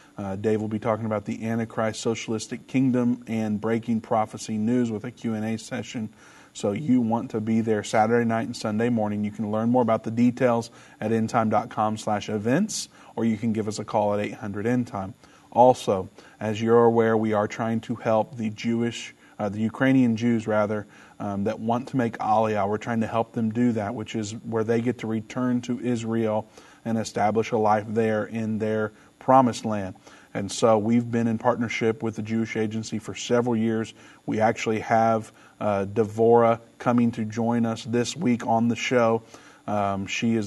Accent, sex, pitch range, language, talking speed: American, male, 110-115 Hz, English, 190 wpm